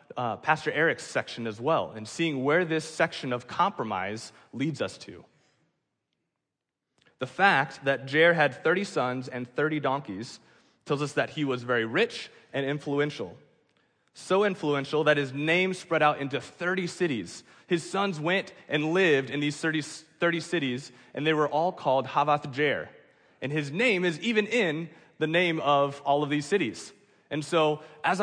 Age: 30-49